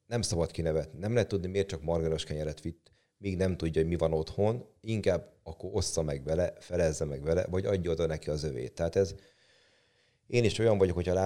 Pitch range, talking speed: 80-95 Hz, 215 wpm